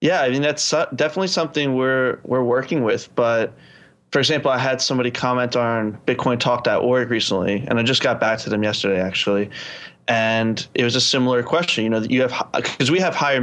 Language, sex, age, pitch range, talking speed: English, male, 20-39, 115-130 Hz, 195 wpm